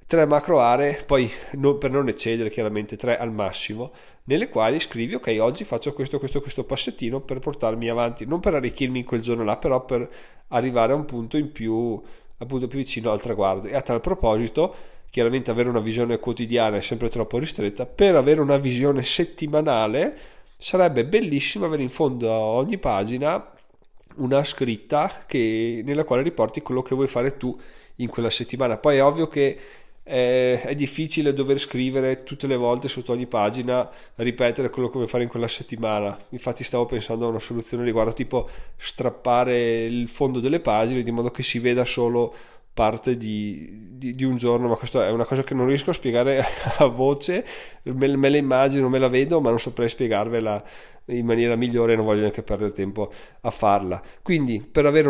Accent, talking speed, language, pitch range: native, 180 wpm, Italian, 115-140 Hz